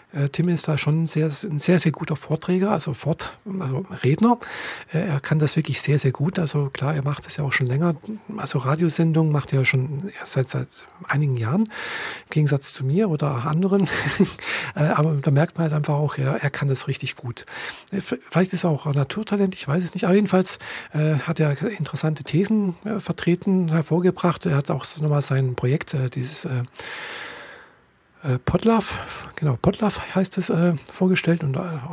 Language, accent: German, German